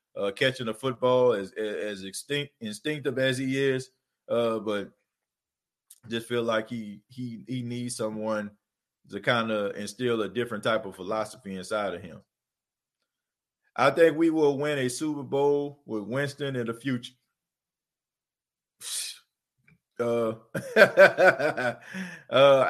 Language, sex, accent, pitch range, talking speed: English, male, American, 110-140 Hz, 125 wpm